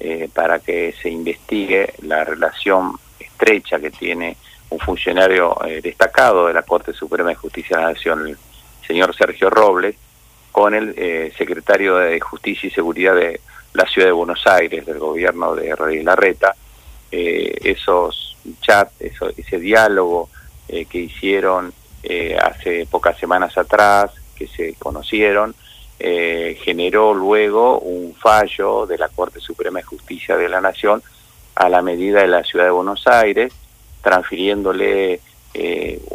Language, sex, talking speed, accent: Spanish, male, 145 wpm, Argentinian